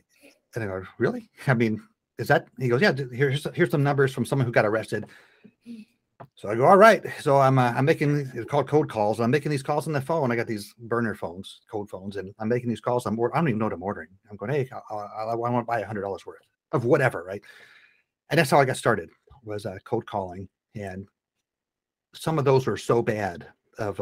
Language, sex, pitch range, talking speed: English, male, 105-130 Hz, 235 wpm